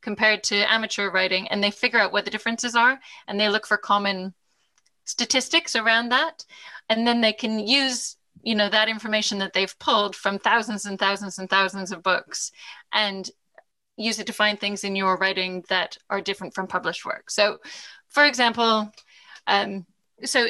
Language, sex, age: English, female, 10-29